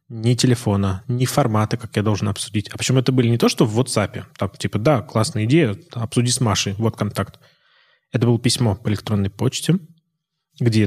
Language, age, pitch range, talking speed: Russian, 20-39, 105-130 Hz, 190 wpm